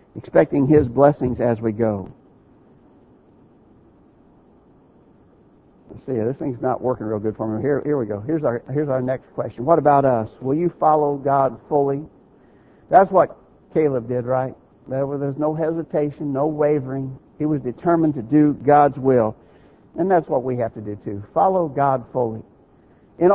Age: 60-79